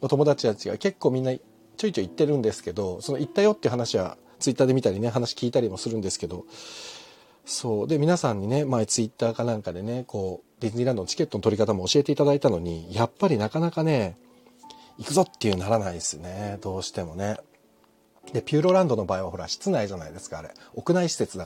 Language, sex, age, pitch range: Japanese, male, 40-59, 110-180 Hz